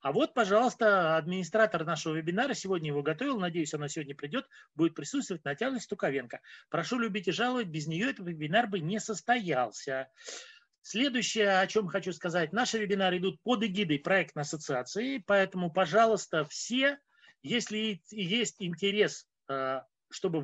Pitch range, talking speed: 165-235 Hz, 140 wpm